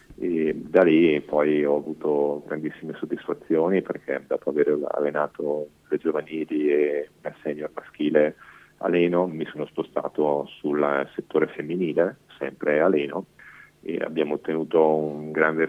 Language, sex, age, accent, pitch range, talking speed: Italian, male, 40-59, native, 75-80 Hz, 130 wpm